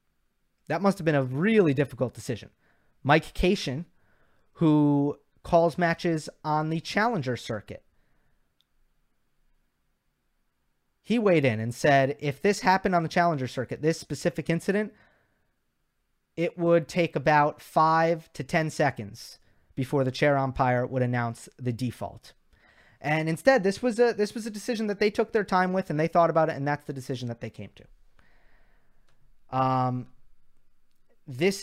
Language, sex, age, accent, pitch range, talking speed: English, male, 30-49, American, 130-170 Hz, 145 wpm